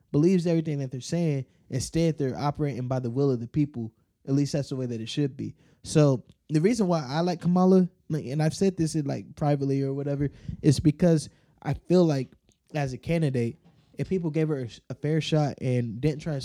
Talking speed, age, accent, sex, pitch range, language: 210 wpm, 20-39, American, male, 130-165 Hz, English